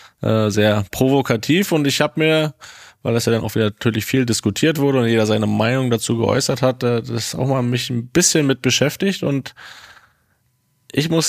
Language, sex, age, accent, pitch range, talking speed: German, male, 20-39, German, 110-135 Hz, 180 wpm